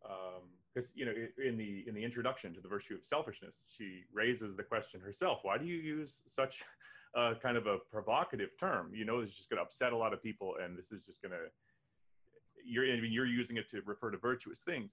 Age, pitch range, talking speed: 30-49, 105-135 Hz, 225 wpm